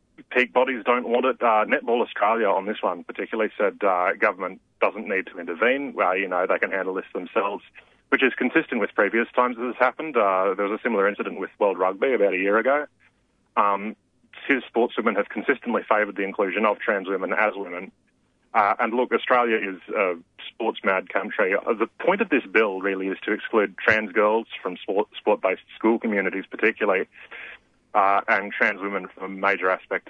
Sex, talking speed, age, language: male, 185 wpm, 30-49, English